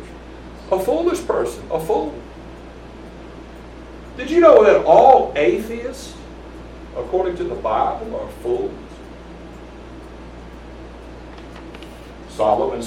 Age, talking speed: 60-79, 85 wpm